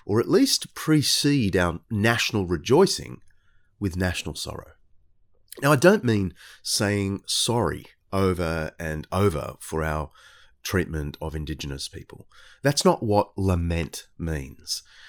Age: 30-49